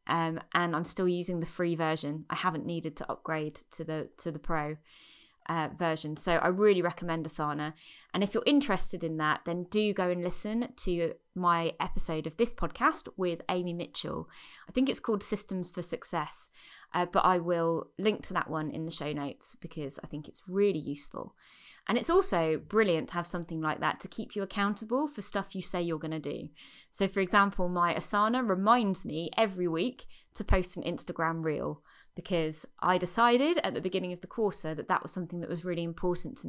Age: 20-39